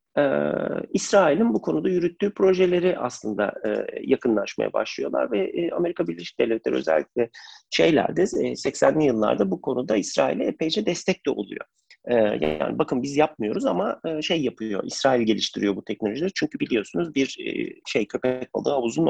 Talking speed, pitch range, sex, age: 150 wpm, 105-160 Hz, male, 40-59